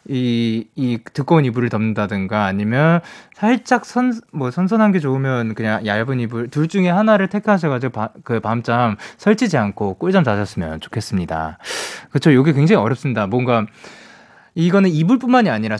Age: 20-39